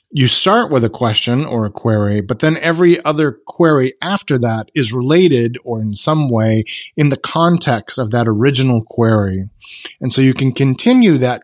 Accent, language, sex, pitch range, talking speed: American, English, male, 120-155 Hz, 180 wpm